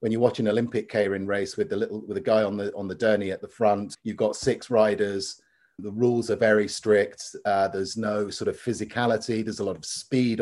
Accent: British